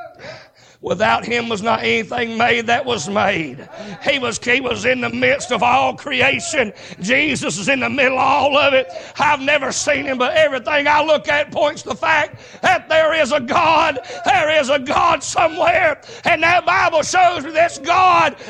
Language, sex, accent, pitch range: English, male, American, 280-375 Hz